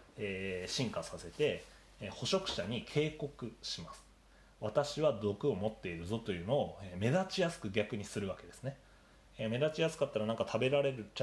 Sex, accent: male, native